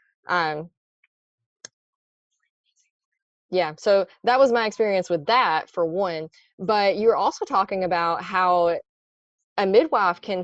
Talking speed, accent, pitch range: 115 wpm, American, 165-215 Hz